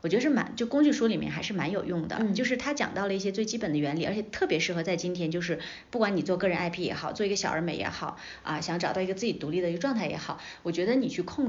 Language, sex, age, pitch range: Chinese, female, 30-49, 175-235 Hz